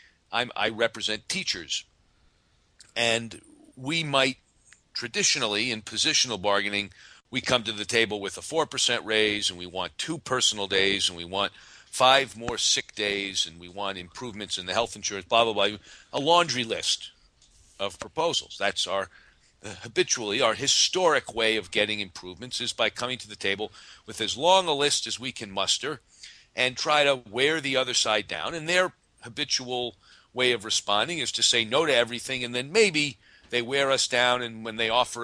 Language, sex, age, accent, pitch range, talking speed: English, male, 40-59, American, 105-135 Hz, 175 wpm